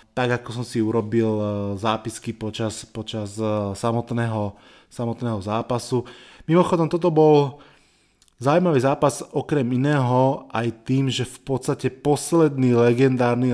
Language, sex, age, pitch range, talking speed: Slovak, male, 20-39, 110-130 Hz, 110 wpm